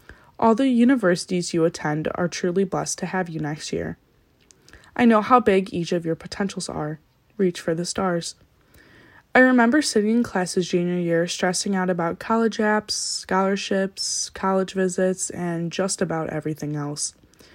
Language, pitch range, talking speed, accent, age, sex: English, 170-225 Hz, 155 wpm, American, 10-29, female